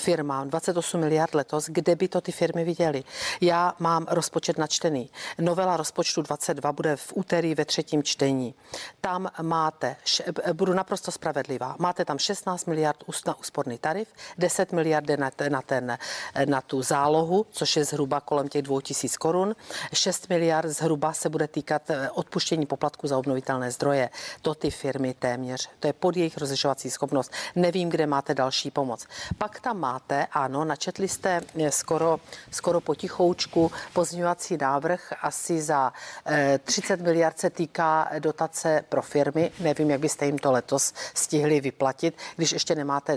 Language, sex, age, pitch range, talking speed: Czech, female, 50-69, 145-175 Hz, 150 wpm